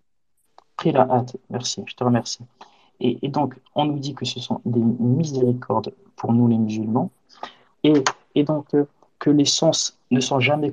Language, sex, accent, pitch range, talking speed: French, male, French, 125-145 Hz, 180 wpm